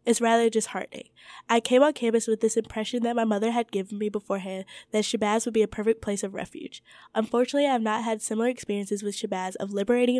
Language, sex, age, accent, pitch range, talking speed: English, female, 10-29, American, 205-245 Hz, 220 wpm